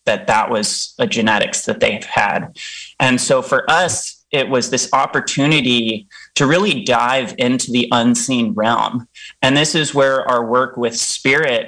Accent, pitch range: American, 120-135 Hz